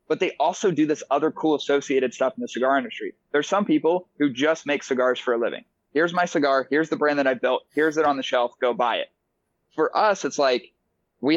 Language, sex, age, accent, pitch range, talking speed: English, male, 20-39, American, 130-160 Hz, 235 wpm